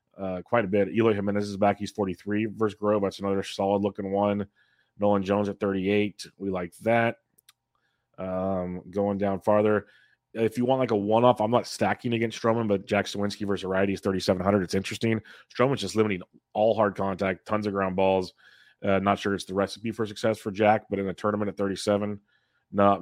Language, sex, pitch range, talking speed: English, male, 95-105 Hz, 195 wpm